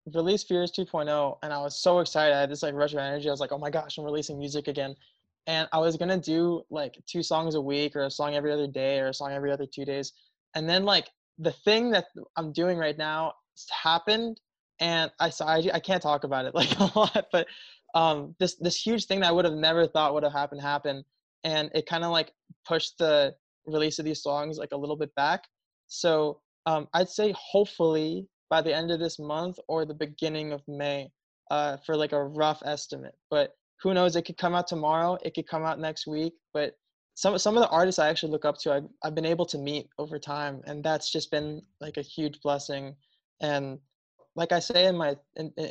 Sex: male